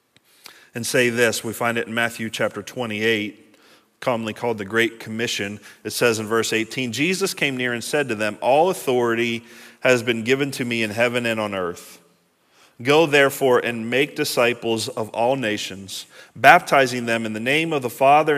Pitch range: 105-125 Hz